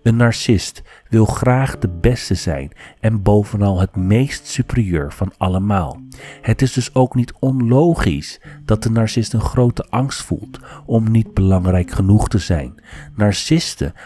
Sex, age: male, 40-59